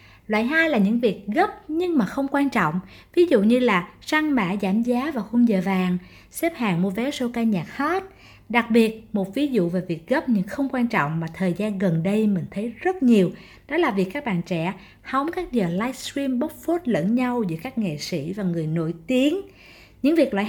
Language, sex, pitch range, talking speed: Vietnamese, female, 190-265 Hz, 225 wpm